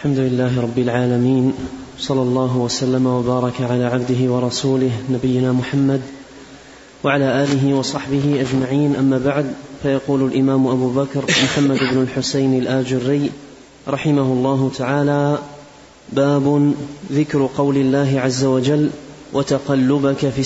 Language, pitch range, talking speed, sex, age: Arabic, 135-145 Hz, 110 wpm, male, 30-49